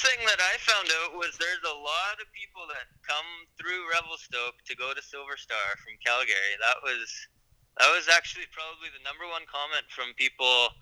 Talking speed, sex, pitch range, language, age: 190 wpm, male, 115-150 Hz, English, 20-39